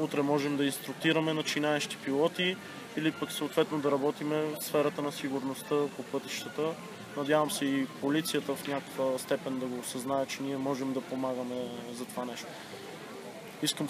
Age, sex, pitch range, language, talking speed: 20-39, male, 140-160 Hz, Bulgarian, 155 wpm